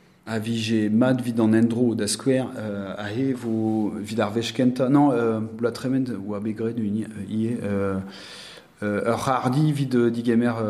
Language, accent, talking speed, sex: French, French, 130 wpm, male